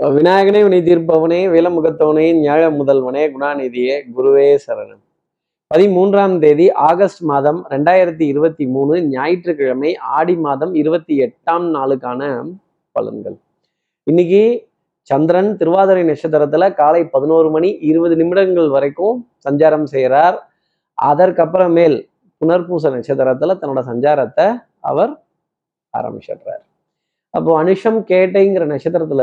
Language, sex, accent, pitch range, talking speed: Tamil, male, native, 145-185 Hz, 90 wpm